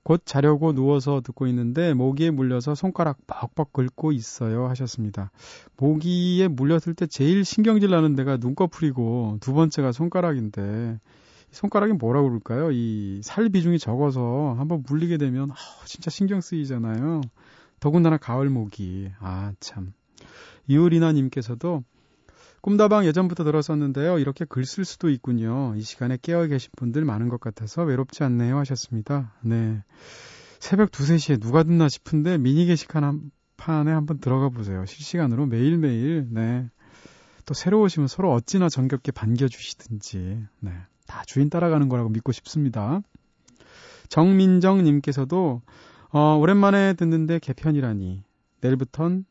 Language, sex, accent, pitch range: Korean, male, native, 120-165 Hz